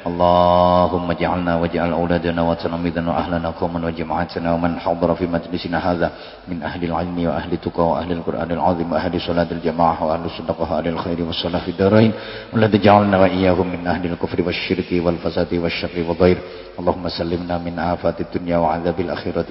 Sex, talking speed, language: male, 150 wpm, English